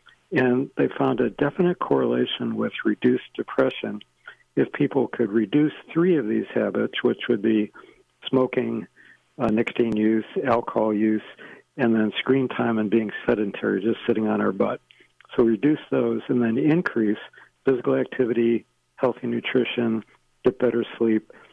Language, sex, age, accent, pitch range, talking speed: English, male, 60-79, American, 110-130 Hz, 140 wpm